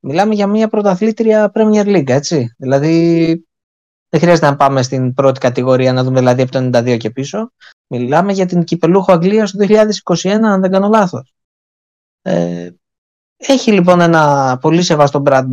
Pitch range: 130-170 Hz